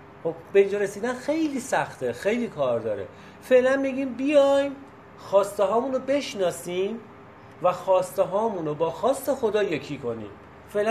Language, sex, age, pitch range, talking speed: Persian, male, 40-59, 130-200 Hz, 130 wpm